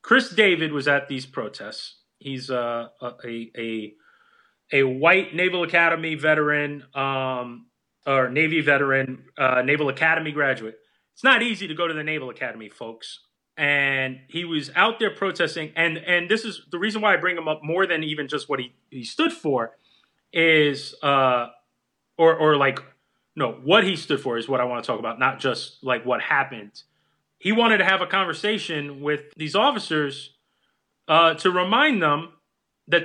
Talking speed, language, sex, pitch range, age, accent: 170 wpm, English, male, 140-195 Hz, 30-49, American